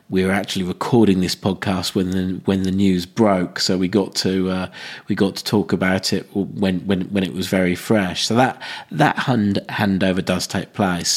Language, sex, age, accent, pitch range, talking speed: English, male, 40-59, British, 90-100 Hz, 205 wpm